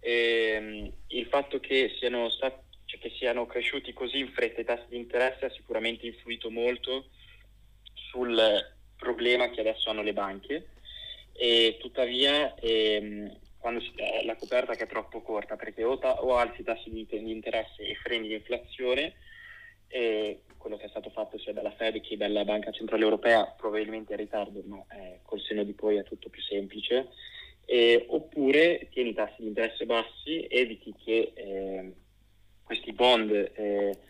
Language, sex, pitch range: Italian, male, 105-120 Hz